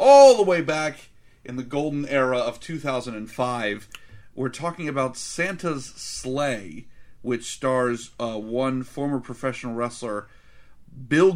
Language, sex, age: English, male, 40-59